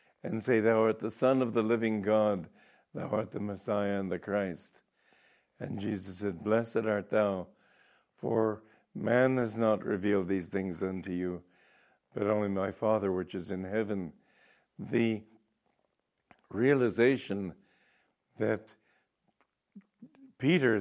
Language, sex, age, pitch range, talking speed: English, male, 60-79, 105-130 Hz, 125 wpm